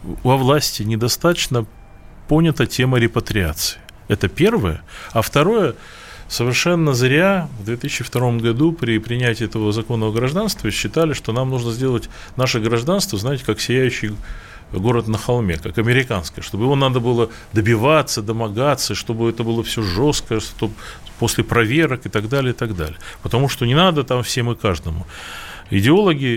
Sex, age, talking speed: male, 20-39, 145 wpm